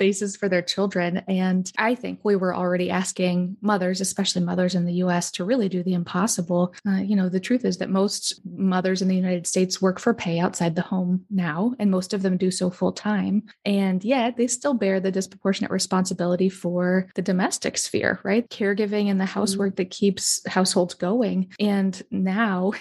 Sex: female